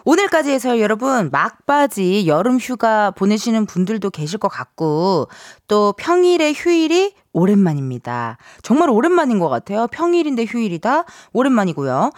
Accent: native